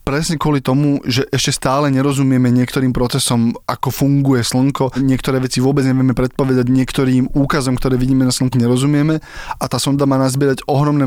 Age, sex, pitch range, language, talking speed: 20-39, male, 130-145 Hz, Slovak, 165 wpm